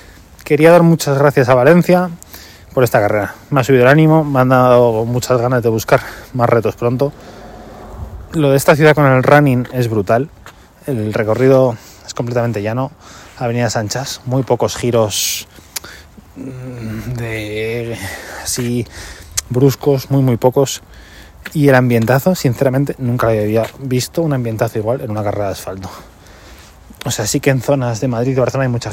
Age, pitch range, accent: 20-39, 105-130 Hz, Spanish